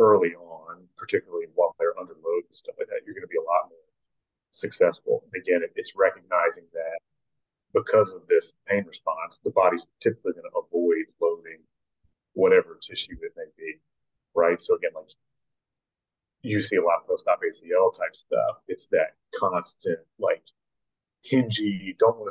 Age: 30-49